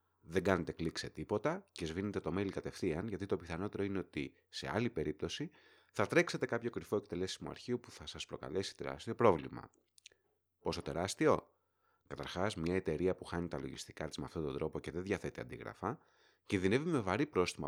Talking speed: 175 wpm